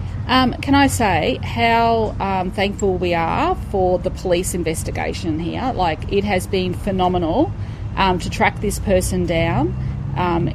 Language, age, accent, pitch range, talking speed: Greek, 30-49, Australian, 105-130 Hz, 150 wpm